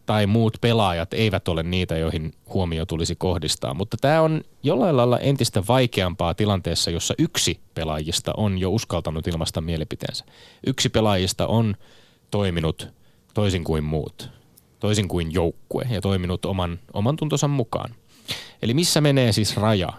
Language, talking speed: Finnish, 140 wpm